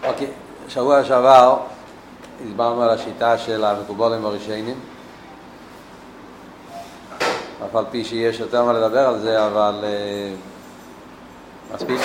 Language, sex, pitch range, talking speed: Hebrew, male, 100-115 Hz, 105 wpm